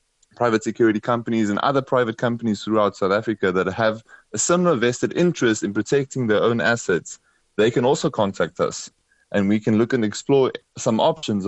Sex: male